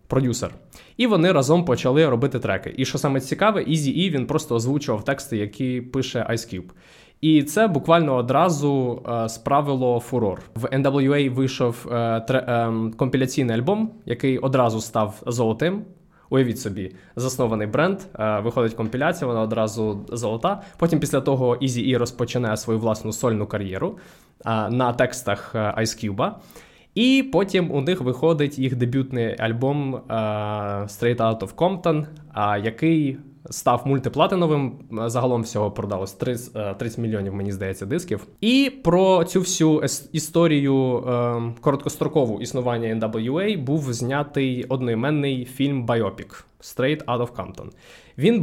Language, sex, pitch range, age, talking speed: Ukrainian, male, 115-150 Hz, 20-39, 130 wpm